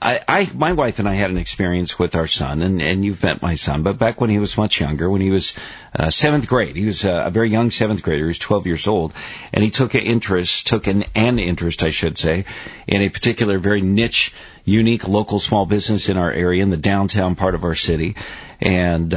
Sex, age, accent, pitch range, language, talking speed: male, 50-69, American, 85-110 Hz, English, 240 wpm